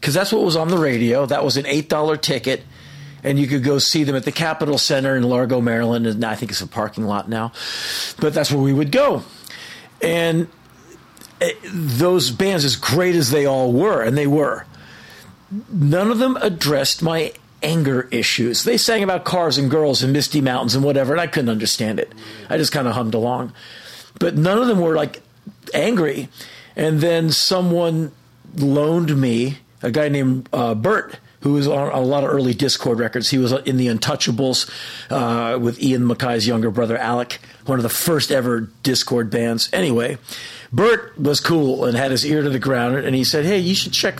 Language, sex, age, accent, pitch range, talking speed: English, male, 40-59, American, 120-155 Hz, 195 wpm